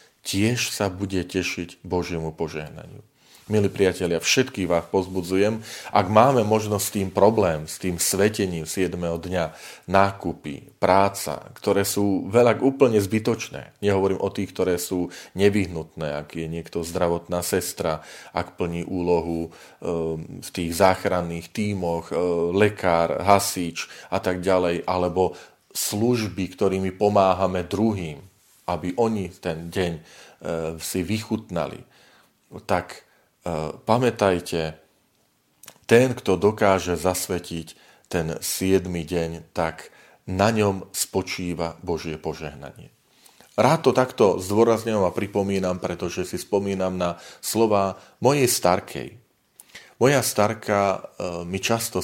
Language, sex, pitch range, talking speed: Slovak, male, 85-100 Hz, 110 wpm